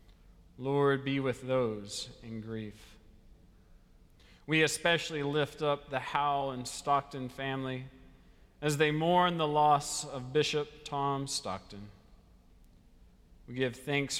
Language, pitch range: English, 110-145 Hz